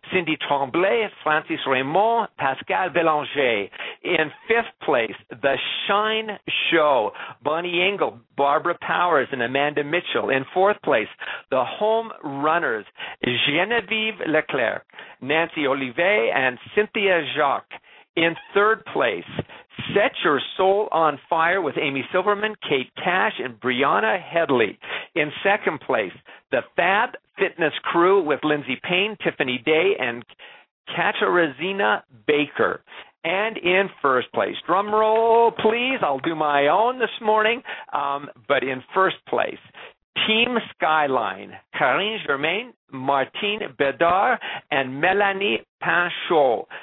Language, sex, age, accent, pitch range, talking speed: English, male, 50-69, American, 140-200 Hz, 115 wpm